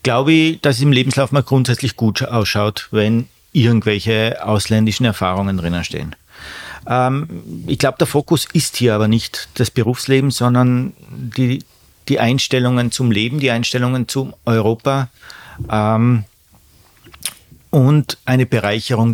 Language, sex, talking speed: German, male, 130 wpm